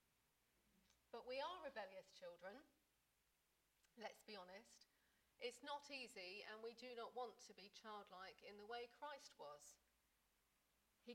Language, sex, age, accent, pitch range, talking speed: English, female, 40-59, British, 190-255 Hz, 135 wpm